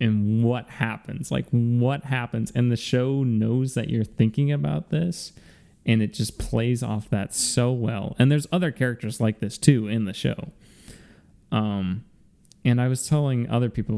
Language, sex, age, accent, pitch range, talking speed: English, male, 20-39, American, 110-140 Hz, 170 wpm